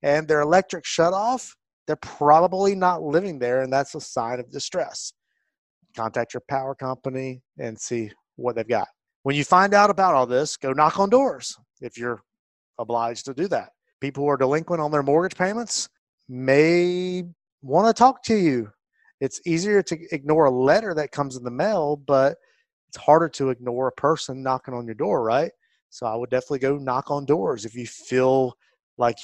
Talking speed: 185 wpm